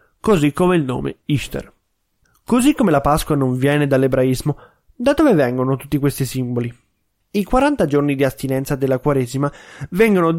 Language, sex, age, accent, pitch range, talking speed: Italian, male, 20-39, native, 135-165 Hz, 150 wpm